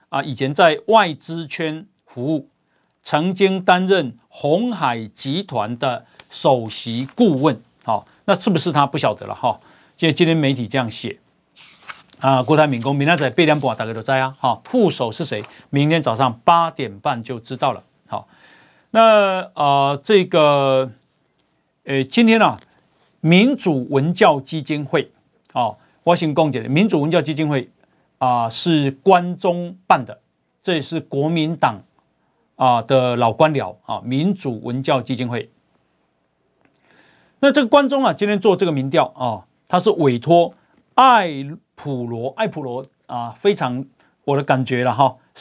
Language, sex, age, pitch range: Chinese, male, 50-69, 130-180 Hz